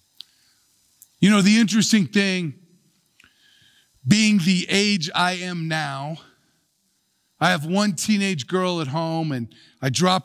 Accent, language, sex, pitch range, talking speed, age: American, English, male, 165-230 Hz, 125 wpm, 50-69